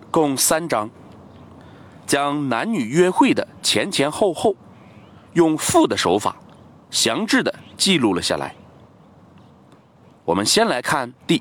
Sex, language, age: male, Chinese, 40-59